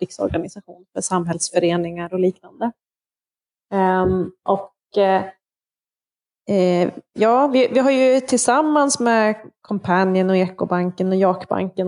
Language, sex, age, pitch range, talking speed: English, female, 20-39, 185-210 Hz, 85 wpm